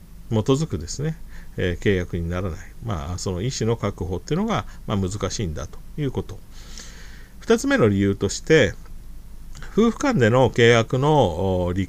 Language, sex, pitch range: Japanese, male, 95-135 Hz